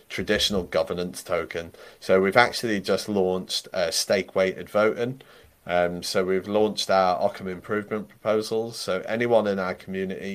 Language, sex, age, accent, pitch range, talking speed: English, male, 30-49, British, 90-110 Hz, 140 wpm